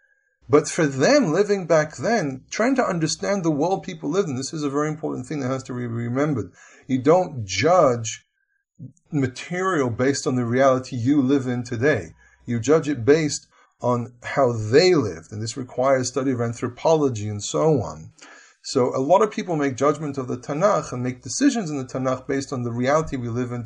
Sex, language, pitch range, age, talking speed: male, English, 120-150 Hz, 30-49, 195 wpm